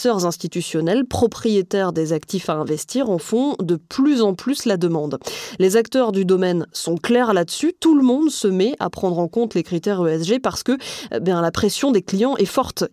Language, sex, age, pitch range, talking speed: French, female, 20-39, 175-235 Hz, 205 wpm